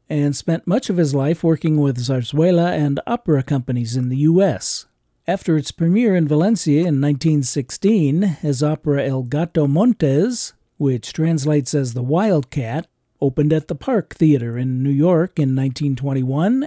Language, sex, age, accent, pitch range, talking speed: English, male, 50-69, American, 140-165 Hz, 150 wpm